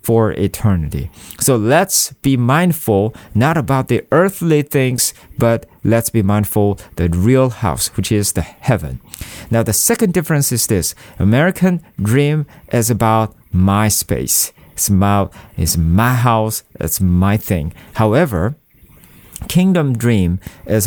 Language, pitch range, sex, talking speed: English, 105-140 Hz, male, 130 wpm